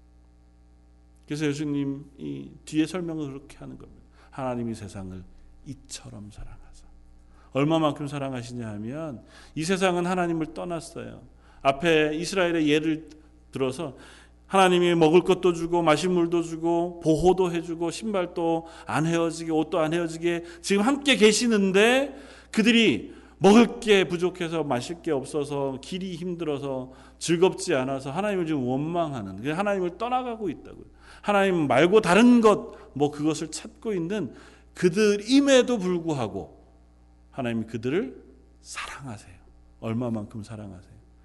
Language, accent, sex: Korean, native, male